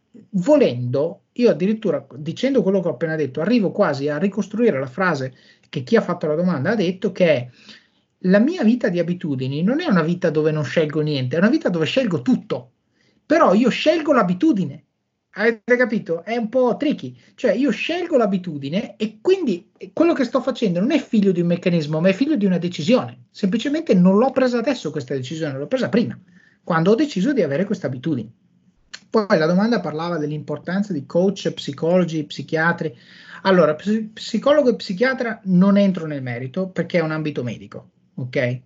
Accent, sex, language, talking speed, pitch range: native, male, Italian, 180 wpm, 140-210 Hz